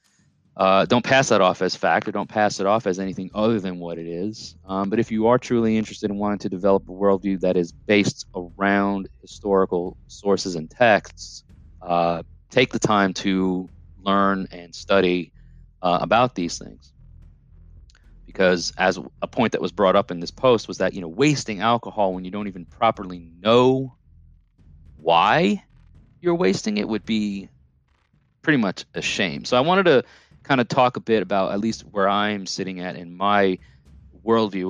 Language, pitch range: English, 85-105 Hz